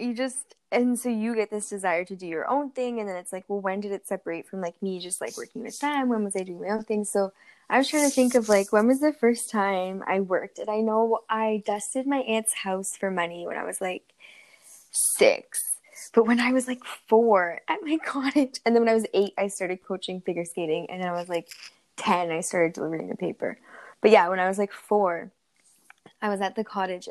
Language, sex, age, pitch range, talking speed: English, female, 10-29, 185-225 Hz, 245 wpm